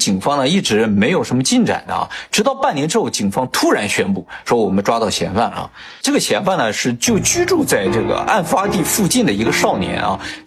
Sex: male